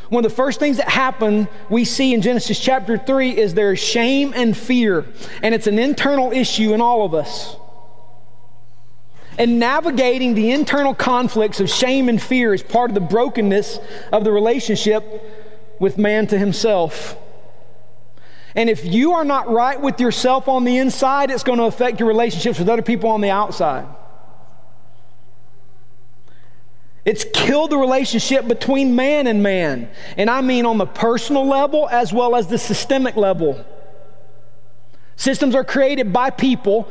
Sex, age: male, 40-59